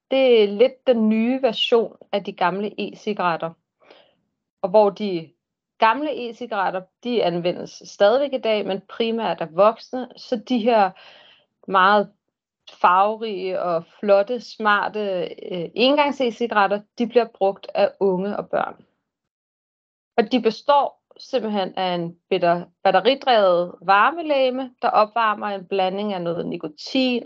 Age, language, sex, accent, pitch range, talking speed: 30-49, Danish, female, native, 185-230 Hz, 125 wpm